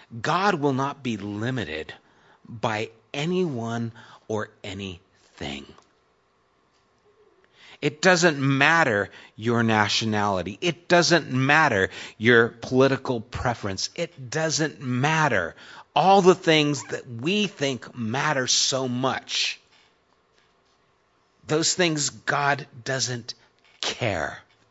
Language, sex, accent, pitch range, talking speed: English, male, American, 120-170 Hz, 90 wpm